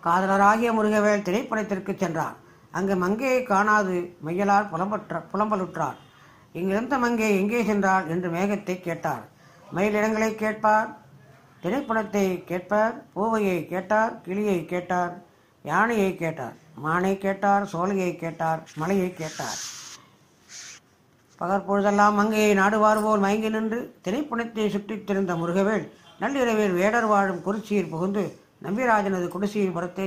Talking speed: 100 wpm